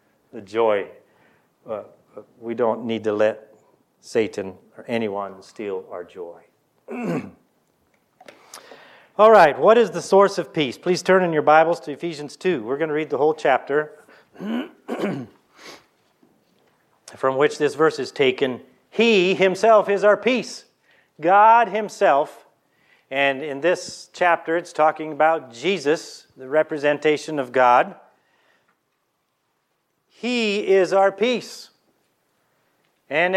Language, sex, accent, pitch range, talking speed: English, male, American, 155-225 Hz, 120 wpm